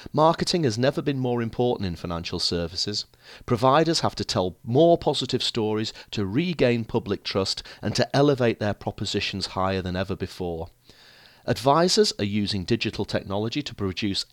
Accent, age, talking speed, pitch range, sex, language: British, 40-59, 150 wpm, 100-135 Hz, male, English